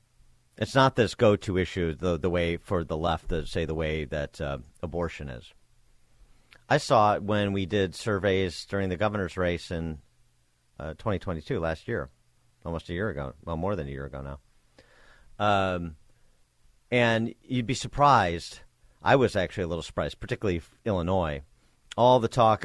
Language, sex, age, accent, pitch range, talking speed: English, male, 50-69, American, 80-105 Hz, 165 wpm